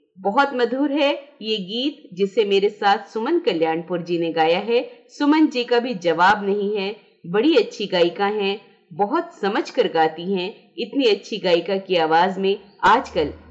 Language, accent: Hindi, native